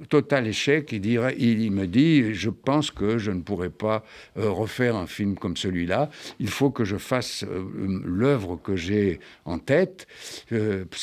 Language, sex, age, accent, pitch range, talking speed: French, male, 60-79, French, 100-140 Hz, 165 wpm